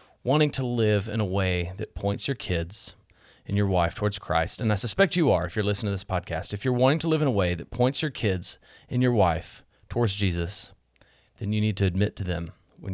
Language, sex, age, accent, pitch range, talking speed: English, male, 30-49, American, 95-115 Hz, 235 wpm